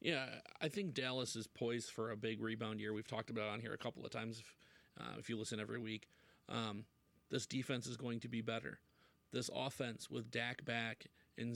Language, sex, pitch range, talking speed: English, male, 115-130 Hz, 220 wpm